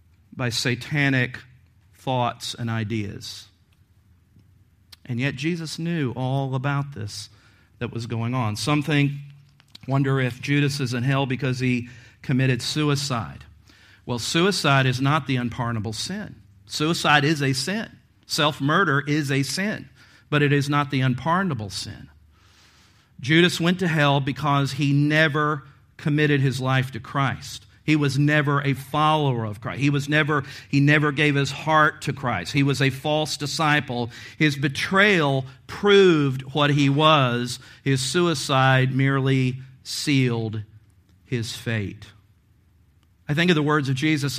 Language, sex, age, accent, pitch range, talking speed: English, male, 50-69, American, 120-150 Hz, 140 wpm